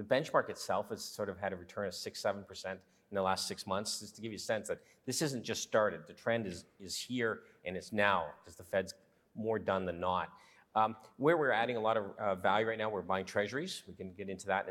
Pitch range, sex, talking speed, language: 100-120 Hz, male, 255 wpm, English